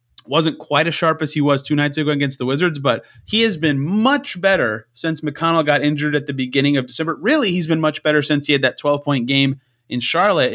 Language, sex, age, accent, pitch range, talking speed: English, male, 30-49, American, 120-155 Hz, 240 wpm